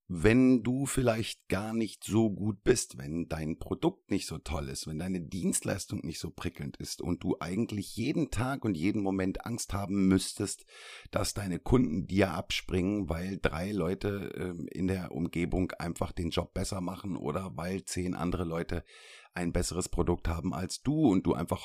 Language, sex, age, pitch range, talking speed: German, male, 50-69, 85-105 Hz, 175 wpm